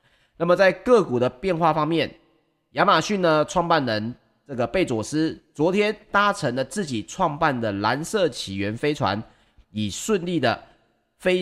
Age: 30-49